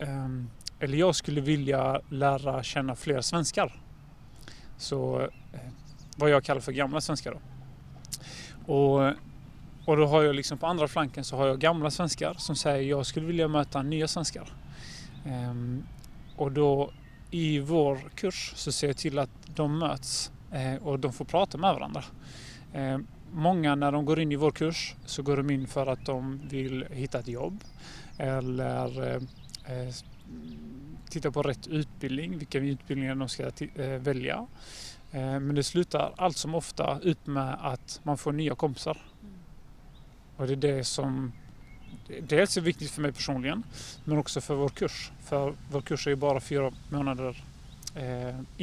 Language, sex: Swedish, male